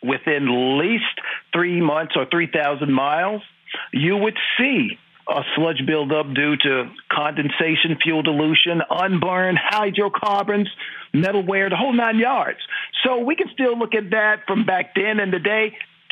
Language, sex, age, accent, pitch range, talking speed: English, male, 50-69, American, 170-260 Hz, 140 wpm